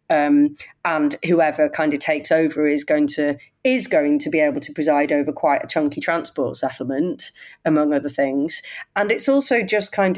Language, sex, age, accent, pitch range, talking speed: English, female, 30-49, British, 140-185 Hz, 185 wpm